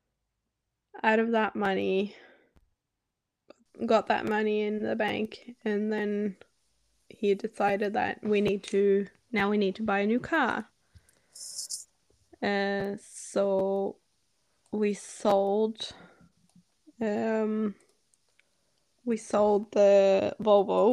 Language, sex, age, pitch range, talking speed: English, female, 10-29, 195-220 Hz, 100 wpm